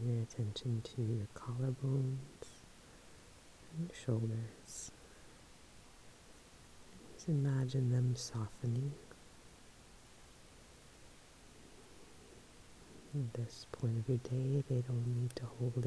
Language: English